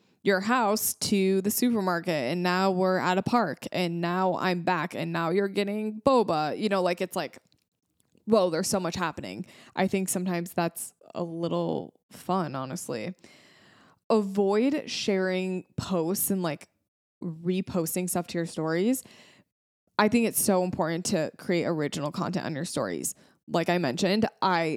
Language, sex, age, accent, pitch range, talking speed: English, female, 20-39, American, 175-210 Hz, 155 wpm